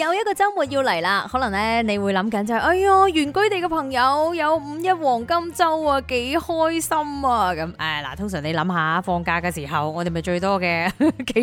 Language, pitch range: Chinese, 200-300 Hz